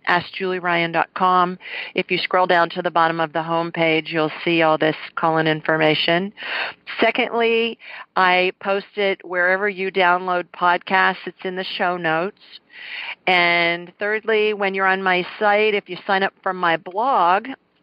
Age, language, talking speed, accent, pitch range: 50-69, English, 155 wpm, American, 165-200 Hz